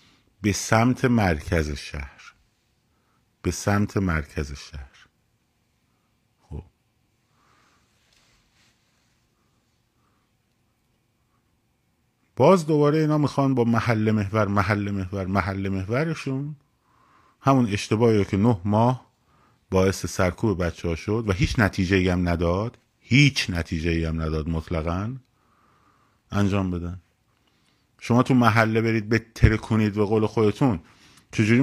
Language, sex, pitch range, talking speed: Persian, male, 95-120 Hz, 105 wpm